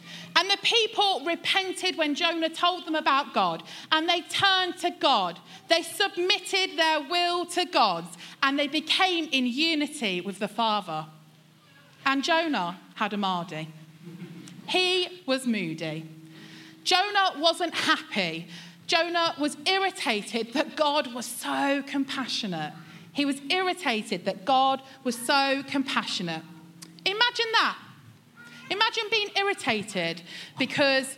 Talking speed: 120 wpm